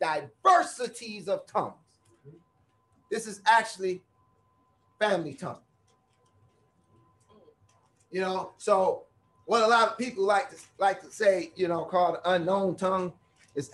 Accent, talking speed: American, 120 wpm